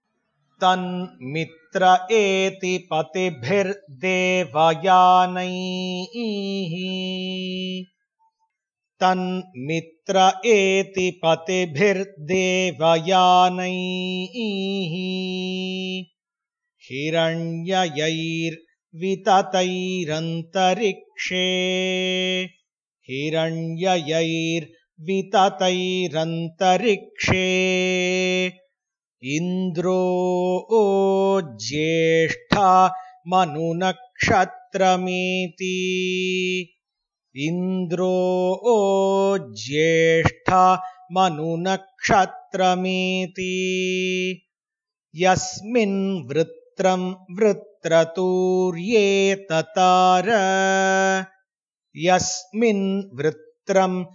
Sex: male